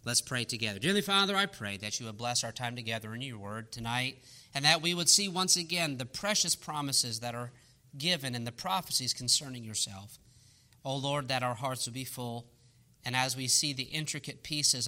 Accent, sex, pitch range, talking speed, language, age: American, male, 120-185 Hz, 205 wpm, English, 40-59